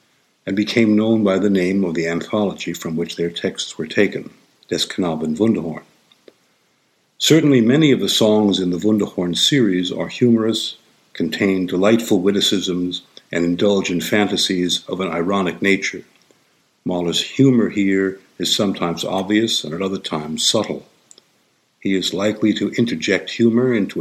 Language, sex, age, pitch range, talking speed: English, male, 60-79, 90-110 Hz, 140 wpm